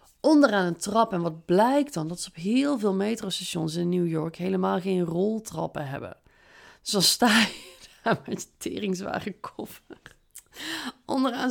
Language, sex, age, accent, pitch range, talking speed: Dutch, female, 30-49, Dutch, 195-245 Hz, 155 wpm